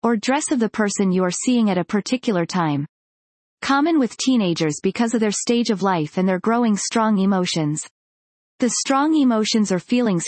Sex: female